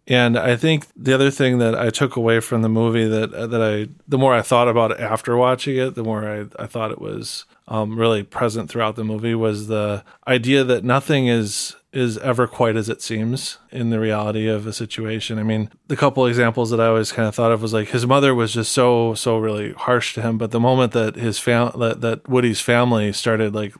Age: 20-39